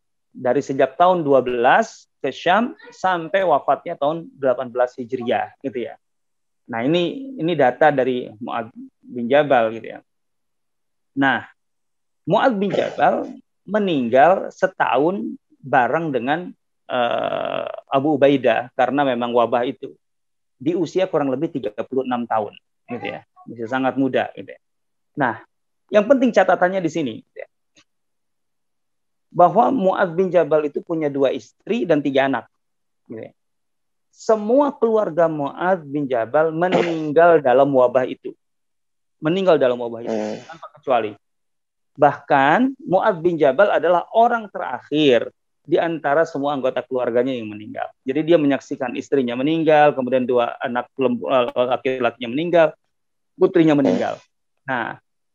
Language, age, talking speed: Indonesian, 30-49, 120 wpm